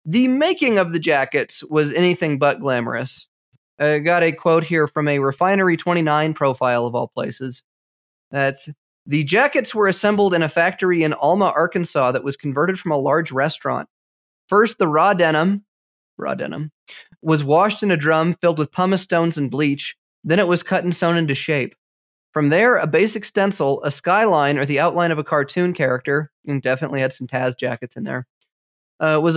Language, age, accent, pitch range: English, 20-39, American, 140-180 Hz